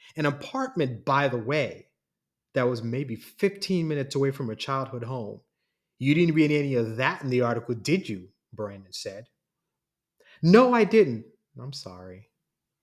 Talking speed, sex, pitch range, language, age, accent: 155 wpm, male, 115-150 Hz, English, 30-49, American